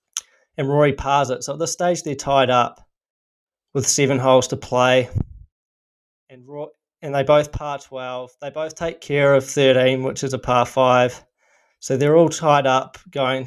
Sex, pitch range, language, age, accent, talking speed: male, 125-140 Hz, English, 20-39, Australian, 175 wpm